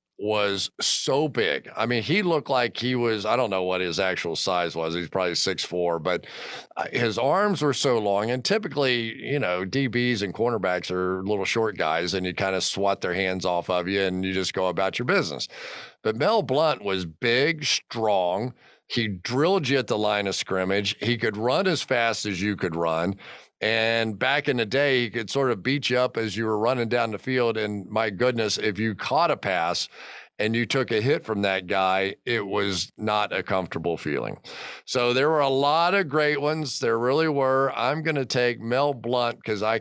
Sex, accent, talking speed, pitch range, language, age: male, American, 210 wpm, 95-125 Hz, English, 50-69